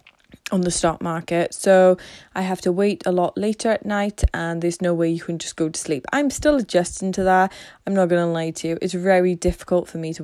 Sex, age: female, 20-39